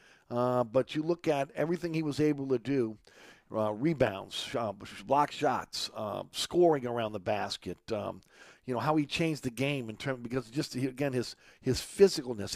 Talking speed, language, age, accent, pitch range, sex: 175 wpm, English, 50-69, American, 110-140 Hz, male